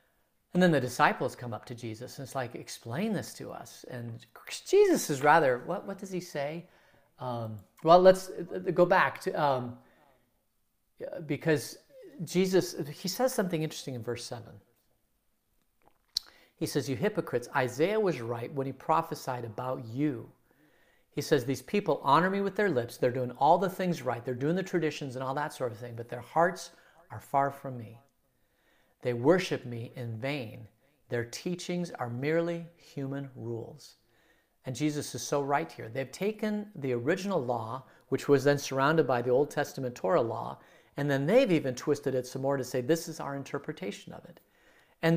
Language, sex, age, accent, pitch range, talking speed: English, male, 50-69, American, 125-170 Hz, 175 wpm